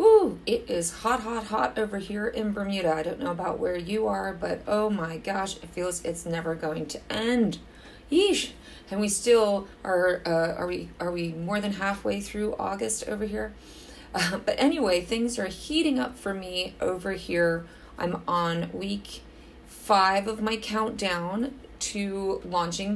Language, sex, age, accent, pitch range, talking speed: English, female, 30-49, American, 165-220 Hz, 170 wpm